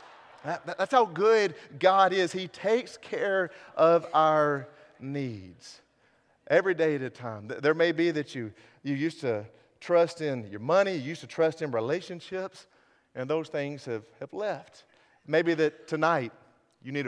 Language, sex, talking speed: English, male, 160 wpm